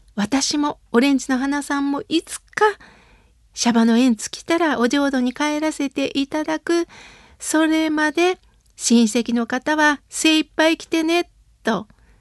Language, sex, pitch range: Japanese, female, 240-315 Hz